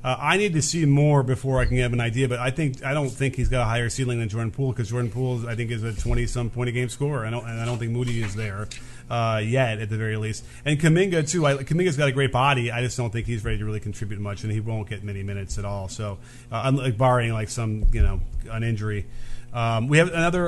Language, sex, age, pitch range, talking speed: English, male, 40-59, 120-150 Hz, 280 wpm